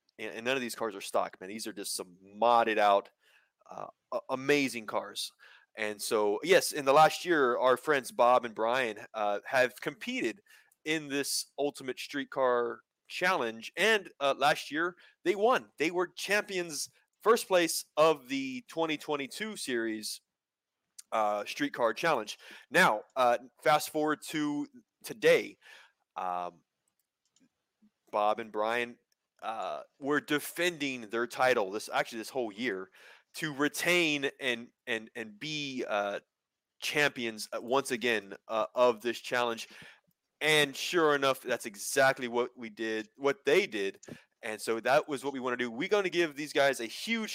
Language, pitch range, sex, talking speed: English, 120-165 Hz, male, 150 wpm